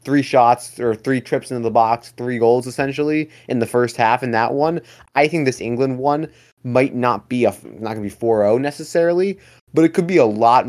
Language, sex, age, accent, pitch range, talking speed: English, male, 20-39, American, 115-135 Hz, 215 wpm